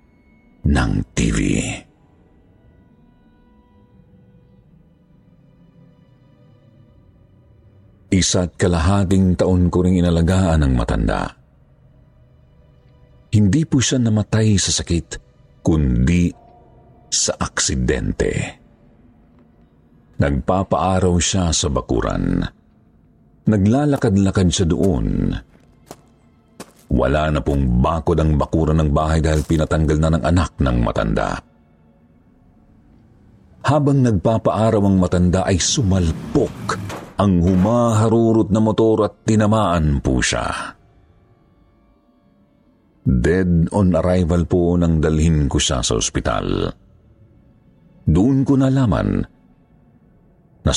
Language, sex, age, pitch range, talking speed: Filipino, male, 50-69, 80-110 Hz, 80 wpm